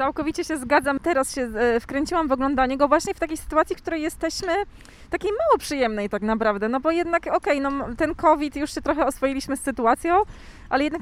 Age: 20-39